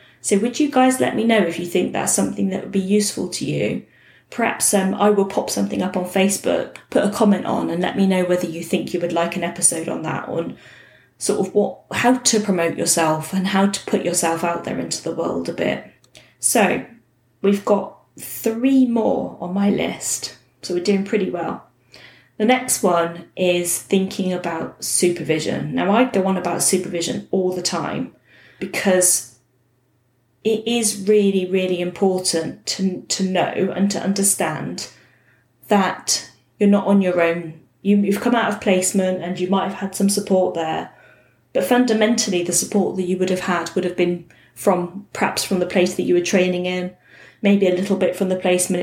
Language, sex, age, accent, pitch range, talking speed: English, female, 20-39, British, 175-205 Hz, 190 wpm